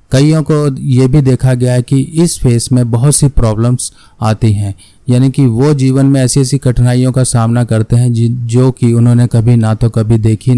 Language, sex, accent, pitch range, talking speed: Hindi, male, native, 115-130 Hz, 220 wpm